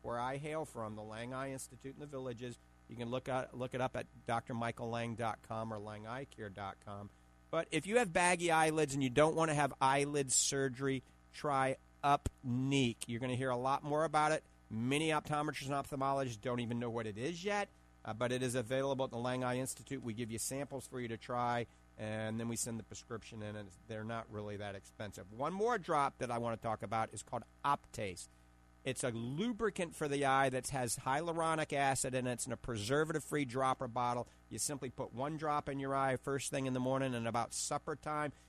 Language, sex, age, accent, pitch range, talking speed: English, male, 50-69, American, 115-140 Hz, 210 wpm